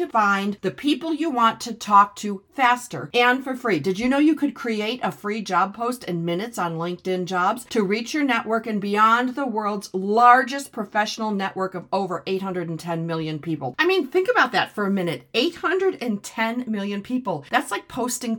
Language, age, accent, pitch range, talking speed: English, 50-69, American, 185-245 Hz, 185 wpm